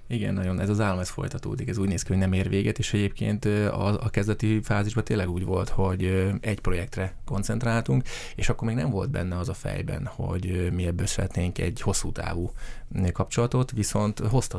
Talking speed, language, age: 190 wpm, Hungarian, 20-39